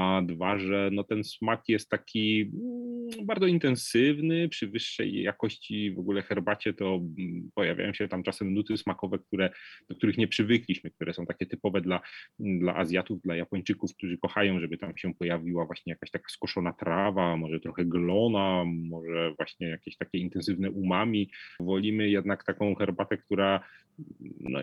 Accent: native